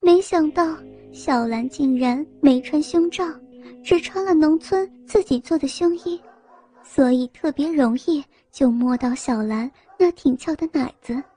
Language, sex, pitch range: Chinese, male, 250-335 Hz